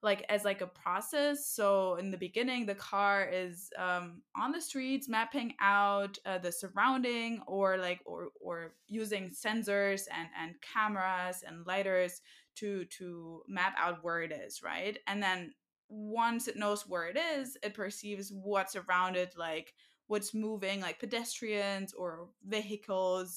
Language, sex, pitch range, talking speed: English, female, 185-230 Hz, 155 wpm